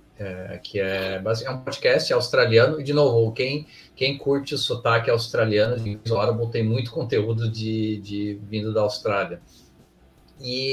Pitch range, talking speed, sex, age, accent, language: 105-135 Hz, 155 wpm, male, 30-49, Brazilian, Portuguese